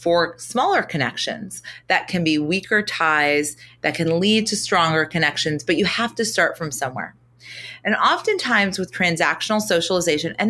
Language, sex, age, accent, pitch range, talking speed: English, female, 30-49, American, 150-205 Hz, 155 wpm